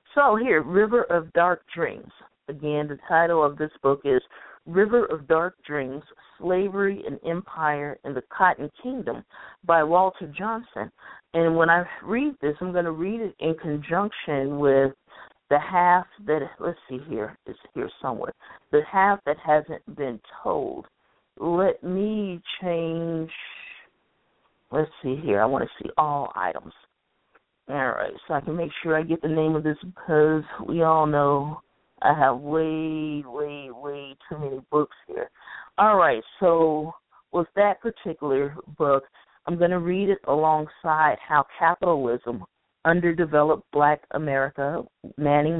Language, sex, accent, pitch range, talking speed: English, female, American, 145-180 Hz, 145 wpm